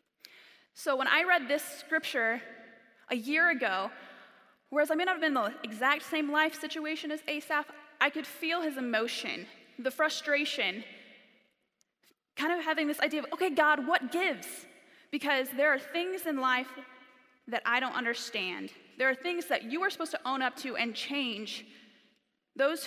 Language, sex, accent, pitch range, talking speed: English, female, American, 245-310 Hz, 170 wpm